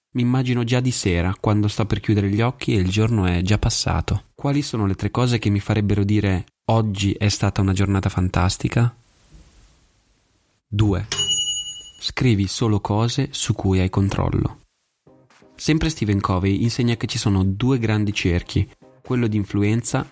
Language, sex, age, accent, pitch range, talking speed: Italian, male, 20-39, native, 100-125 Hz, 160 wpm